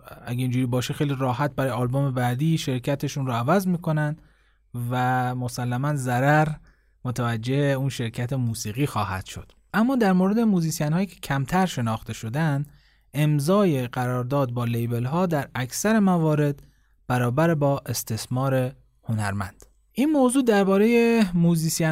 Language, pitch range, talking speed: Persian, 125-165 Hz, 125 wpm